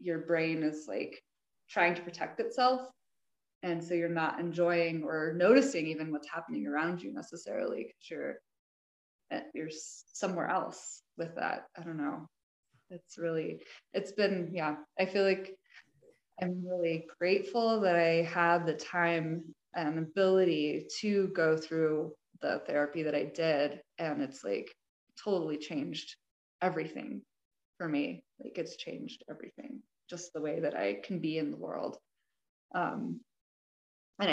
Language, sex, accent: English, female, American